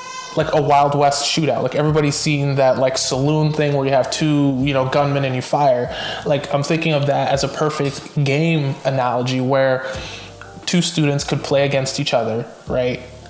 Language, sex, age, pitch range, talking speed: English, male, 20-39, 135-155 Hz, 185 wpm